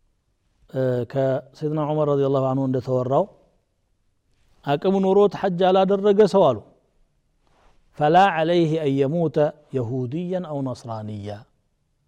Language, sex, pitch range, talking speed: Amharic, male, 130-160 Hz, 105 wpm